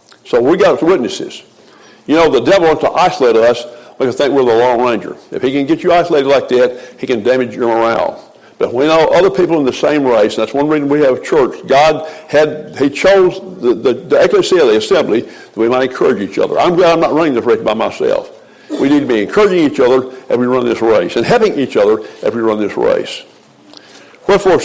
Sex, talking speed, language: male, 230 wpm, English